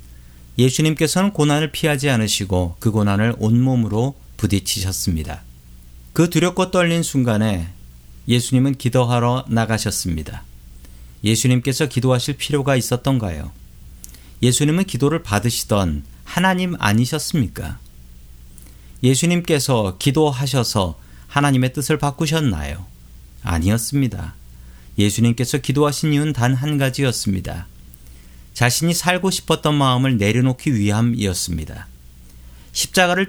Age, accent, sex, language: 40-59, native, male, Korean